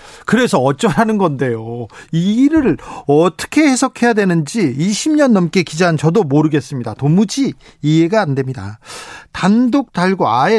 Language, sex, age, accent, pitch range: Korean, male, 40-59, native, 145-215 Hz